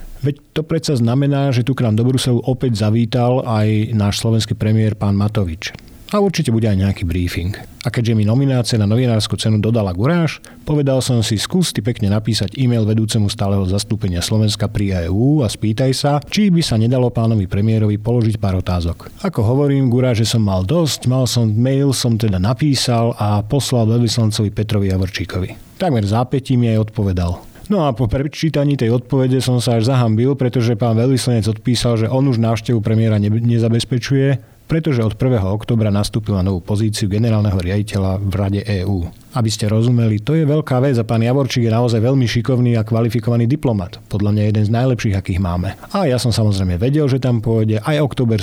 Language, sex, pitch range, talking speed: Slovak, male, 105-130 Hz, 185 wpm